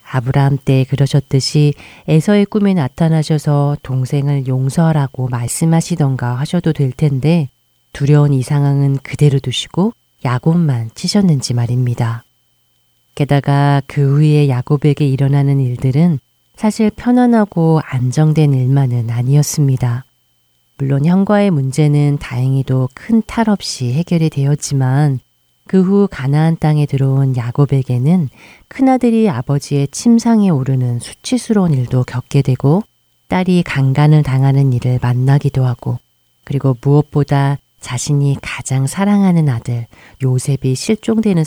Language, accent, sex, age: Korean, native, female, 40-59